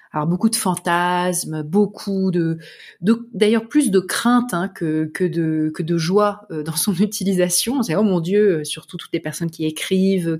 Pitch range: 175-230 Hz